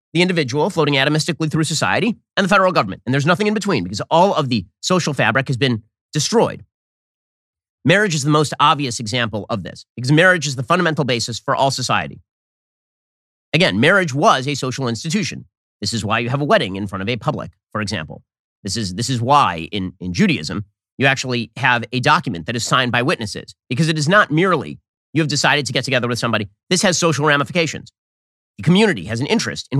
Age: 30-49